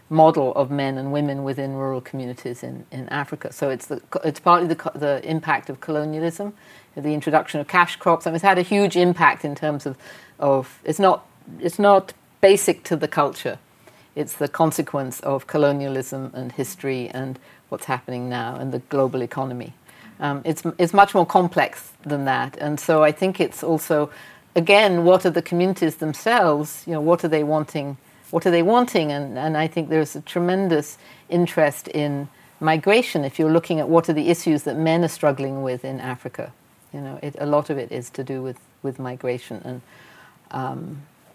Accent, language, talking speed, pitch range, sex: British, English, 190 wpm, 135-175 Hz, female